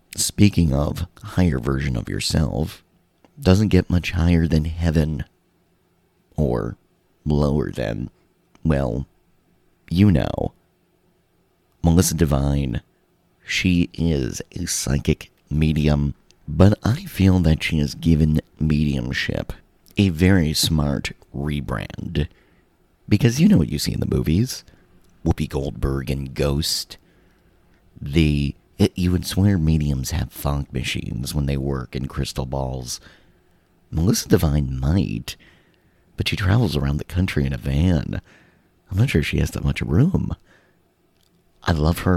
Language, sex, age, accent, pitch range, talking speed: English, male, 40-59, American, 70-90 Hz, 125 wpm